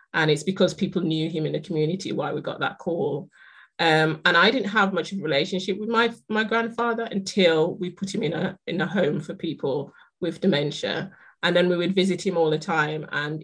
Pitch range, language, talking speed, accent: 160-195 Hz, English, 225 wpm, British